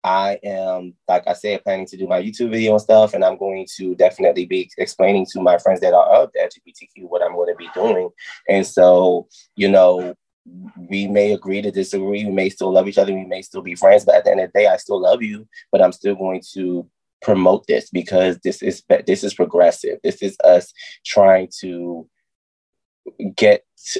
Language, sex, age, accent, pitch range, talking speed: English, male, 20-39, American, 90-110 Hz, 210 wpm